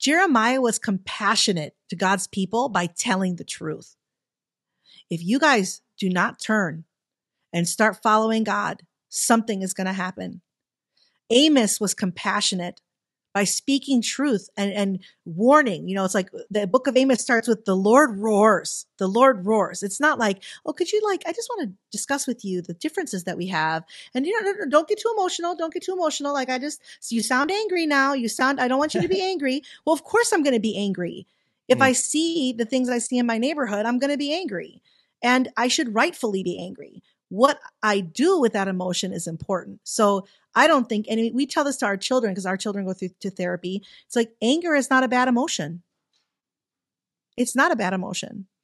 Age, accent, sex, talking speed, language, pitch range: 40-59, American, female, 200 wpm, English, 195-275 Hz